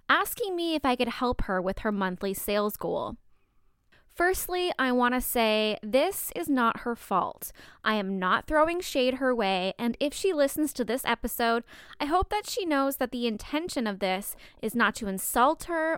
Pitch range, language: 215-275 Hz, English